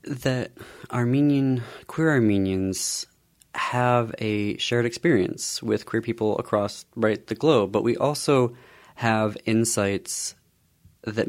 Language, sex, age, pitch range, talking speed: English, male, 30-49, 95-115 Hz, 110 wpm